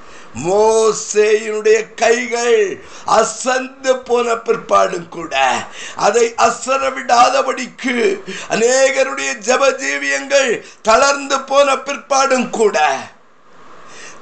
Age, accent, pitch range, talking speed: 50-69, native, 230-280 Hz, 50 wpm